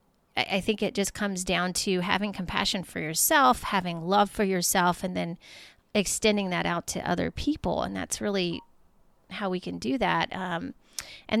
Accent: American